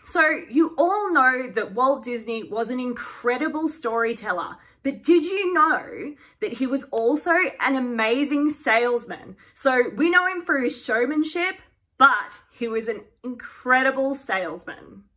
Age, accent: 20-39, Australian